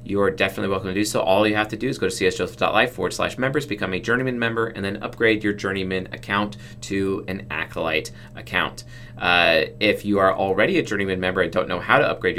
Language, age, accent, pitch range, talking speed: English, 30-49, American, 95-120 Hz, 225 wpm